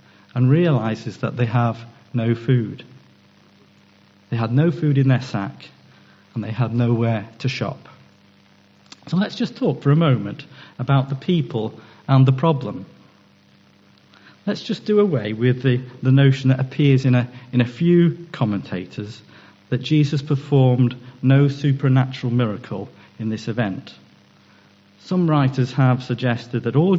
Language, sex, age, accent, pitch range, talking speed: English, male, 50-69, British, 115-140 Hz, 140 wpm